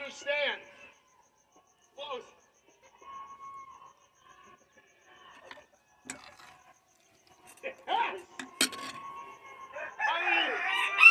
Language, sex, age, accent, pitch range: English, male, 40-59, American, 270-405 Hz